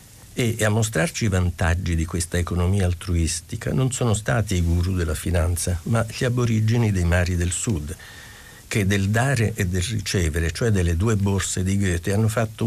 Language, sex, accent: Italian, male, native